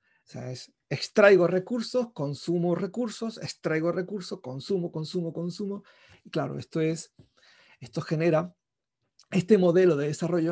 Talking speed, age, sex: 125 wpm, 40-59, male